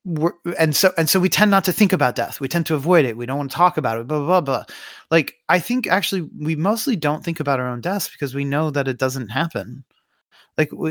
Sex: male